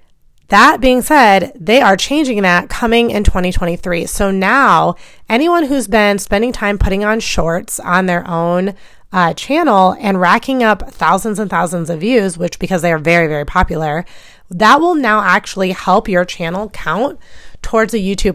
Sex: female